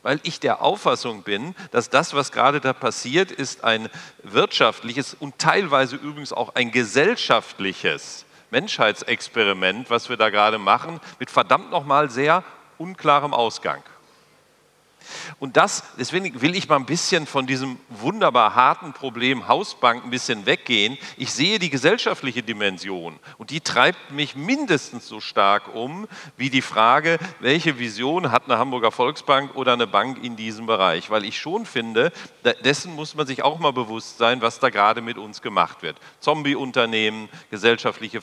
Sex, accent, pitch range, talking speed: male, German, 115-150 Hz, 155 wpm